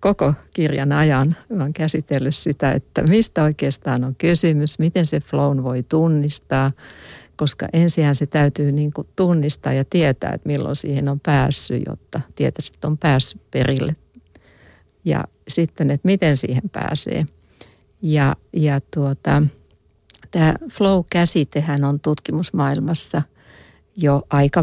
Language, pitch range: Finnish, 140-160 Hz